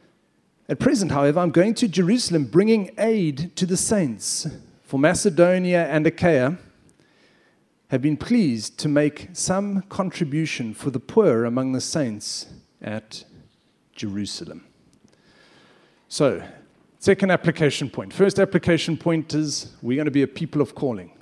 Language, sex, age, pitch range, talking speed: English, male, 40-59, 140-185 Hz, 135 wpm